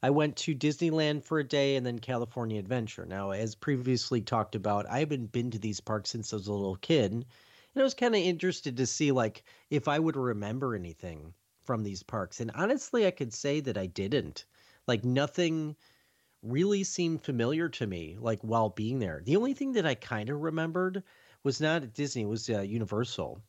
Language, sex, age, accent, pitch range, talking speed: English, male, 40-59, American, 110-150 Hz, 205 wpm